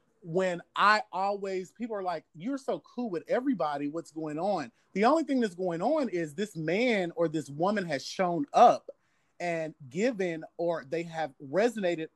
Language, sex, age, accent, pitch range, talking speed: English, male, 30-49, American, 150-210 Hz, 175 wpm